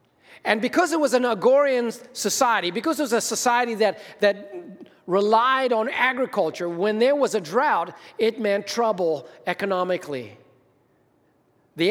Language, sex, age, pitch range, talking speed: English, male, 40-59, 200-255 Hz, 135 wpm